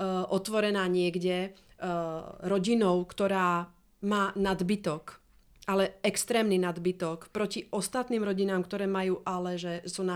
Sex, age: female, 30-49